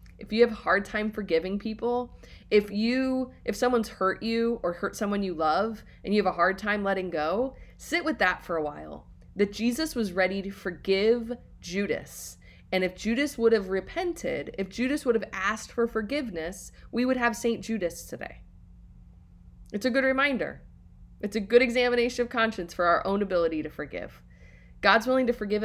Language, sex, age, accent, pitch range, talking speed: English, female, 20-39, American, 175-230 Hz, 185 wpm